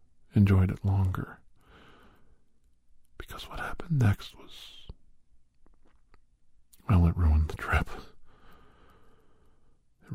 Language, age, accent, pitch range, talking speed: English, 50-69, American, 85-105 Hz, 85 wpm